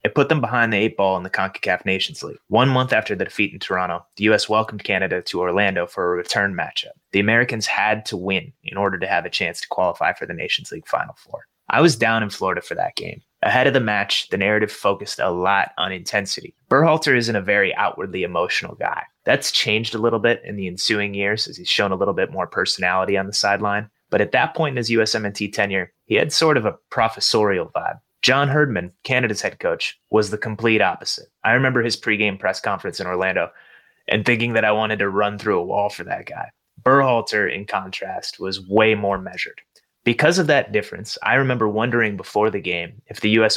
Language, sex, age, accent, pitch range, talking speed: English, male, 20-39, American, 100-115 Hz, 220 wpm